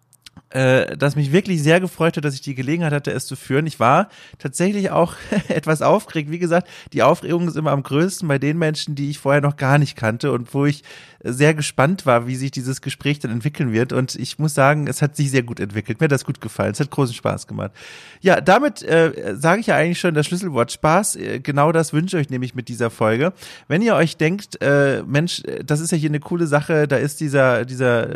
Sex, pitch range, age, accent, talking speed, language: male, 130-165 Hz, 30-49, German, 230 wpm, German